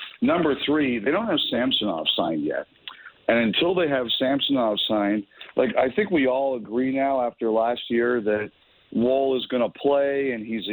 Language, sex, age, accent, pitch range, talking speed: English, male, 50-69, American, 120-140 Hz, 180 wpm